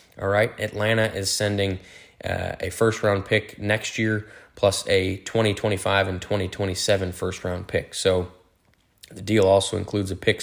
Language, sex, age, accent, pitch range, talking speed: English, male, 20-39, American, 95-105 Hz, 155 wpm